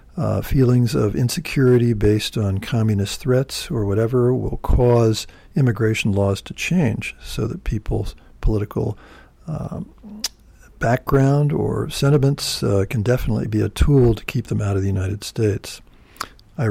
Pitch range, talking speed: 105-125 Hz, 145 wpm